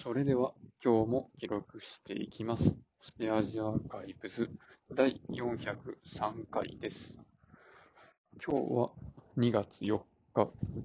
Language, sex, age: Japanese, male, 20-39